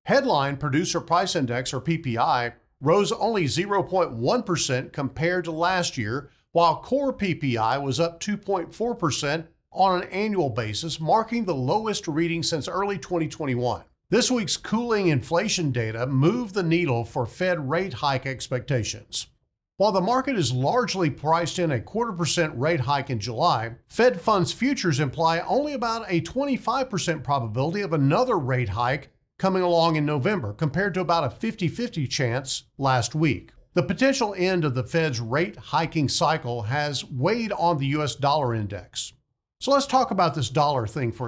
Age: 50-69